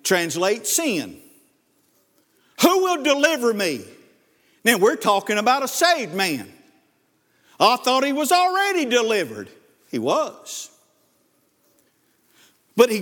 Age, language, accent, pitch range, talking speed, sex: 50-69, English, American, 200-285 Hz, 105 wpm, male